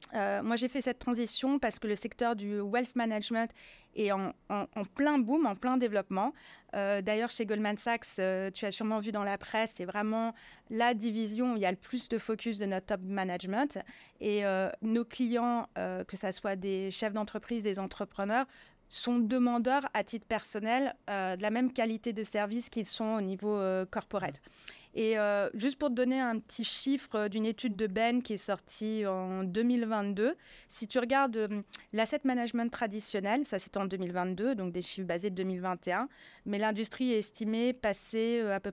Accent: French